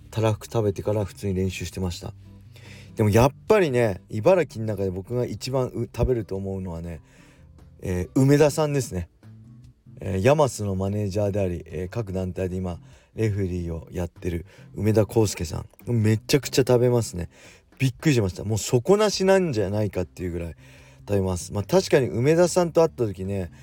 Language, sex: Japanese, male